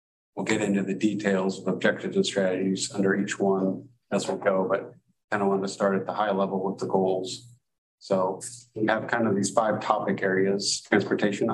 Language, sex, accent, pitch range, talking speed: English, male, American, 95-110 Hz, 200 wpm